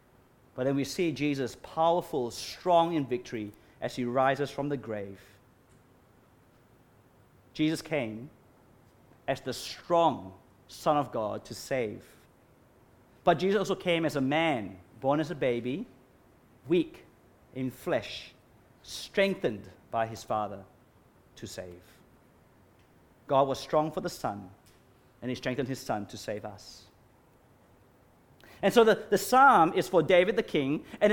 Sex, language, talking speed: male, English, 135 wpm